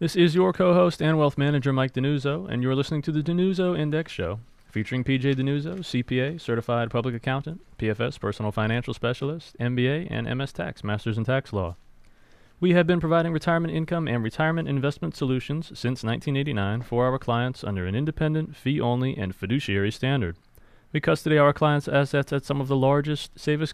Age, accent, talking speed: 30-49, American, 175 wpm